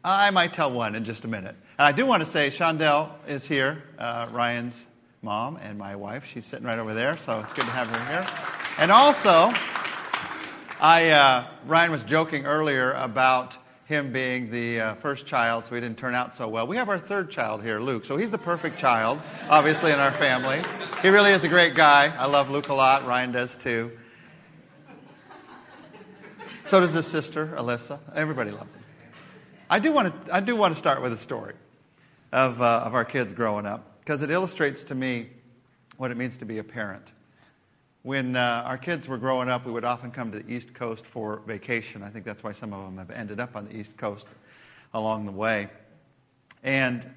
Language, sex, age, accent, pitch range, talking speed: English, male, 40-59, American, 115-145 Hz, 205 wpm